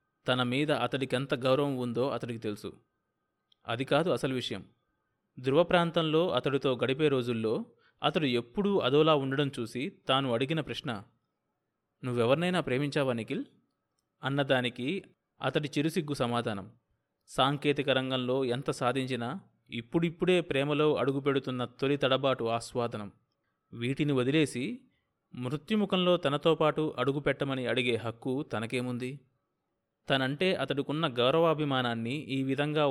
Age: 30-49